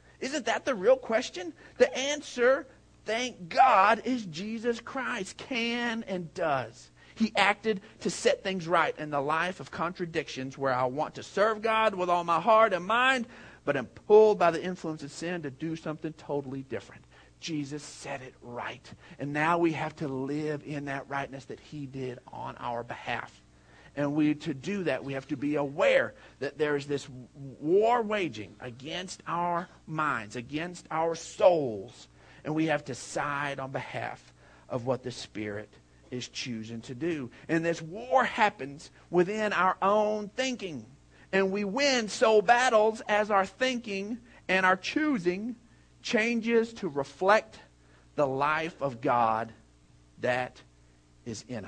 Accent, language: American, English